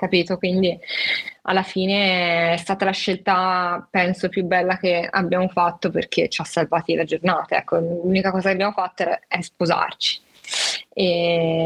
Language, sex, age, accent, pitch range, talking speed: Italian, female, 20-39, native, 180-210 Hz, 150 wpm